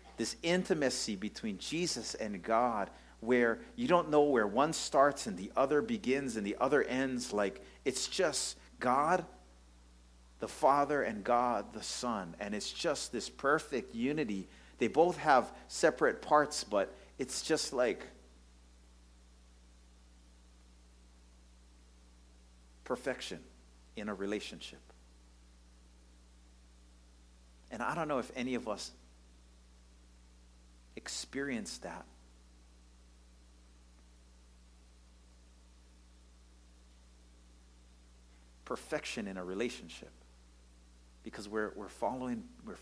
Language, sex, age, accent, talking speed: English, male, 50-69, American, 95 wpm